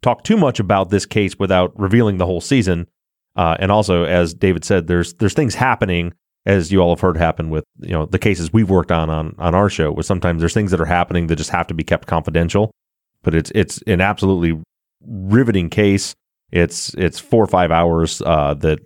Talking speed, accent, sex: 215 wpm, American, male